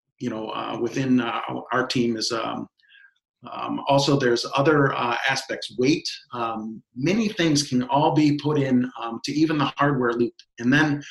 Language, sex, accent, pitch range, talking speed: English, male, American, 120-145 Hz, 175 wpm